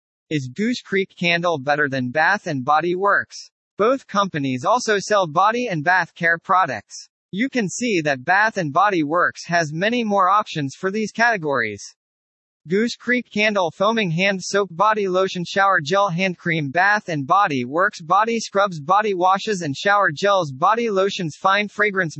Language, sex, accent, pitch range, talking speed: English, male, American, 155-210 Hz, 155 wpm